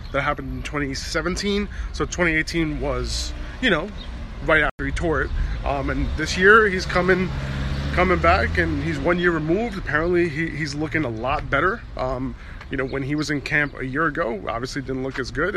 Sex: male